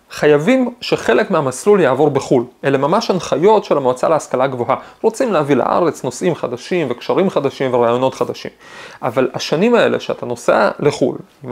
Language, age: Hebrew, 30-49